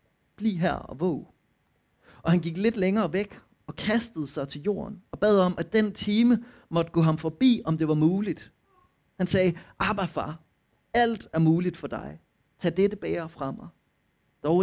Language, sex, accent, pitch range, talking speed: Danish, male, native, 145-195 Hz, 180 wpm